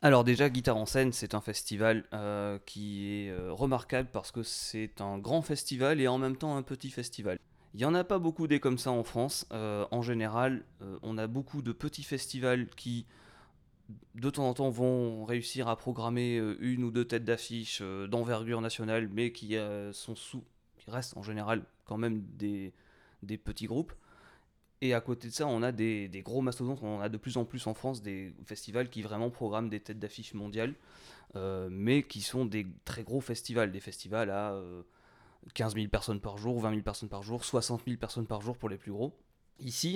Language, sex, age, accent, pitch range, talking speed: French, male, 20-39, French, 105-125 Hz, 210 wpm